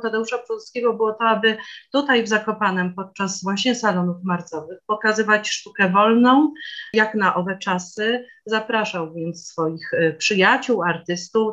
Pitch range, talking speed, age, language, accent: 165-215 Hz, 125 wpm, 40-59, Polish, native